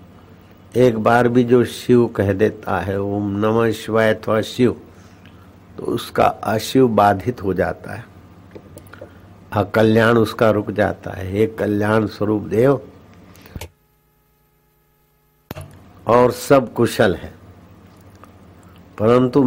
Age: 60-79